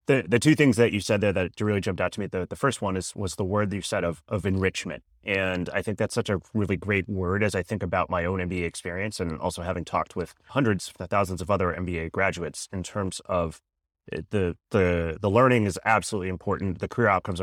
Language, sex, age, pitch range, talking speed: English, male, 30-49, 90-110 Hz, 240 wpm